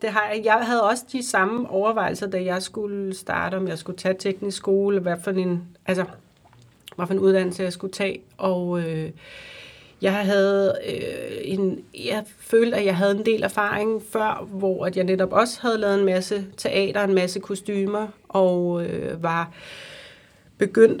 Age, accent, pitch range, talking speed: 30-49, native, 180-205 Hz, 175 wpm